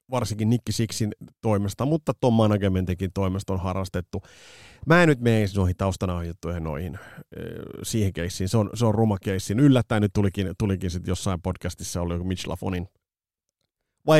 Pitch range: 95-135 Hz